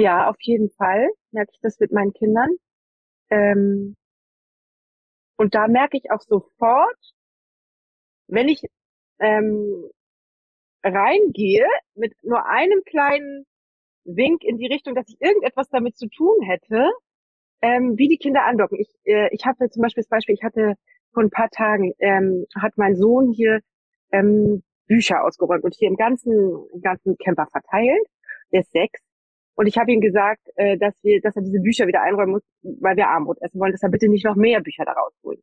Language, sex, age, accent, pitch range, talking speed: German, female, 30-49, German, 200-260 Hz, 170 wpm